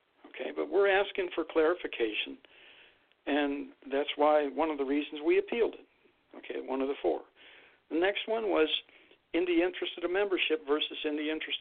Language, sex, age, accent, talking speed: English, male, 60-79, American, 180 wpm